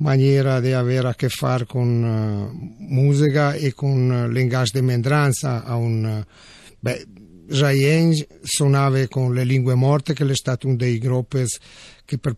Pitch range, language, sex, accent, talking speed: 125-150 Hz, Italian, male, native, 160 wpm